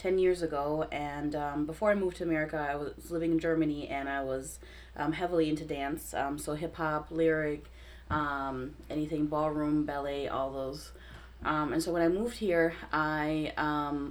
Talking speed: 175 wpm